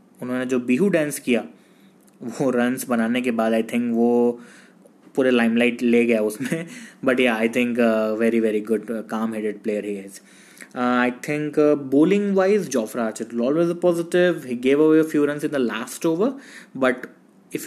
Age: 20-39